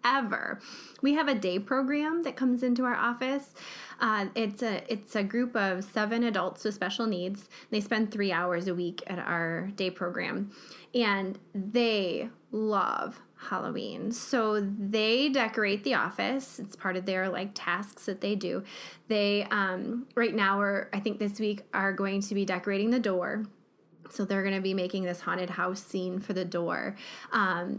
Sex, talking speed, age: female, 175 wpm, 20-39